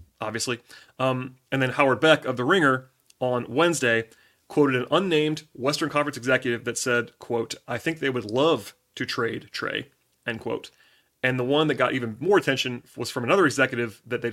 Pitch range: 115-135 Hz